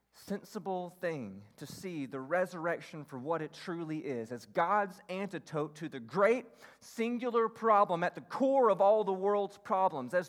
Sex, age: male, 30-49